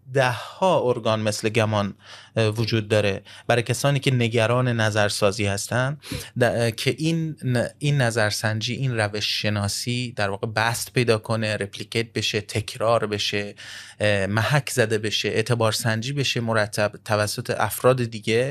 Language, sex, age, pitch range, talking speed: Persian, male, 30-49, 105-125 Hz, 125 wpm